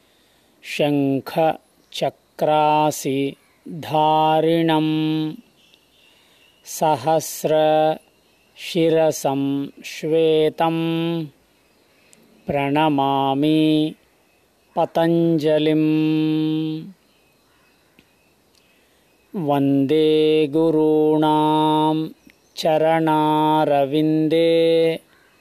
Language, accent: English, Indian